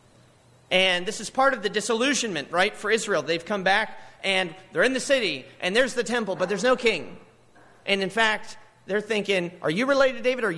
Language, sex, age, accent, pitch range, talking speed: English, male, 30-49, American, 130-215 Hz, 210 wpm